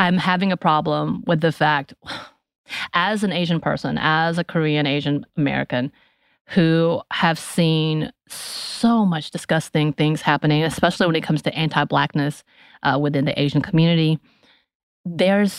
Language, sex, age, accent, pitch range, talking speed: English, female, 30-49, American, 150-180 Hz, 135 wpm